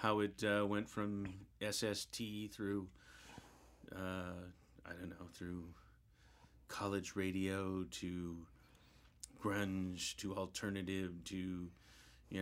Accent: American